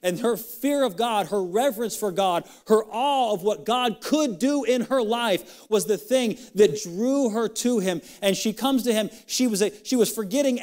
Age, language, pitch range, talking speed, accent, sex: 40-59, English, 175-230 Hz, 215 wpm, American, male